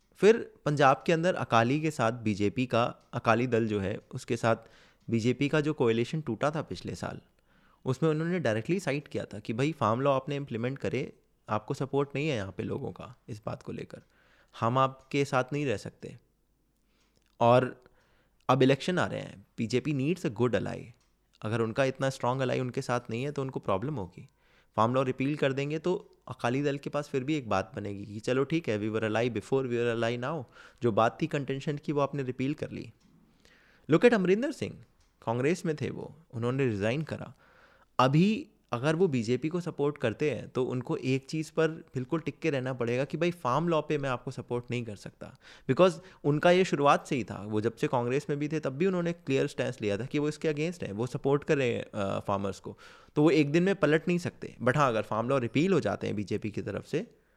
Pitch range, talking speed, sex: 115-155 Hz, 215 wpm, male